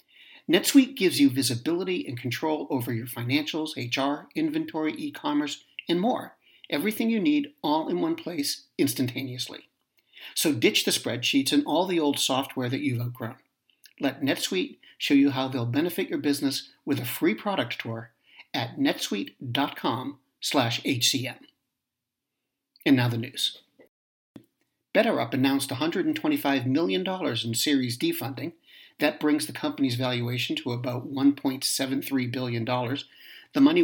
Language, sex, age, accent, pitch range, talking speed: English, male, 50-69, American, 130-165 Hz, 130 wpm